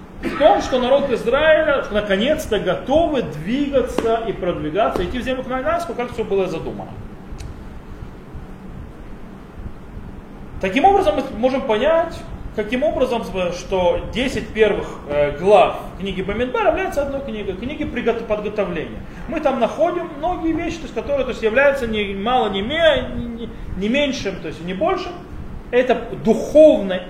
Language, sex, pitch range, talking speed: Russian, male, 180-260 Hz, 130 wpm